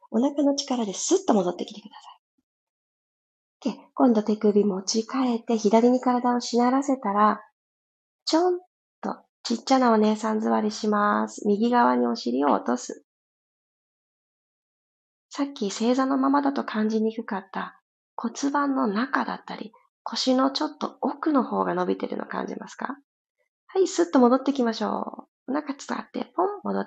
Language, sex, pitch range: Japanese, female, 210-280 Hz